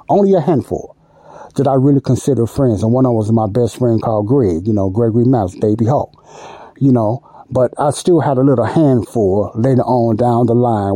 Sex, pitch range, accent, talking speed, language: male, 110-130 Hz, American, 210 wpm, English